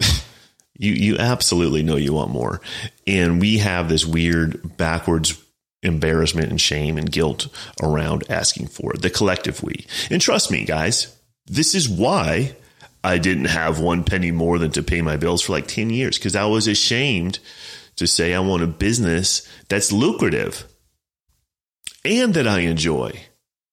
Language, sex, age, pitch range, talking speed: English, male, 30-49, 85-105 Hz, 160 wpm